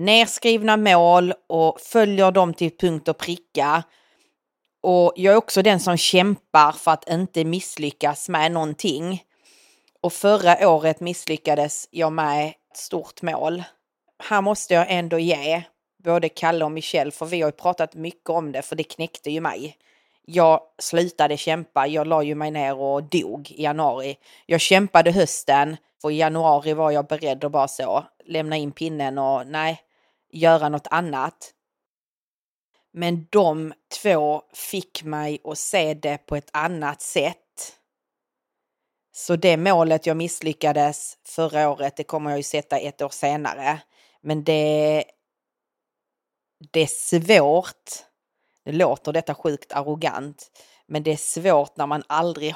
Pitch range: 150-175 Hz